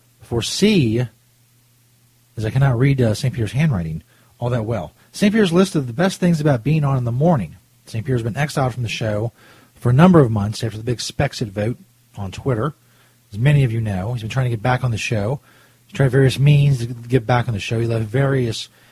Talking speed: 230 wpm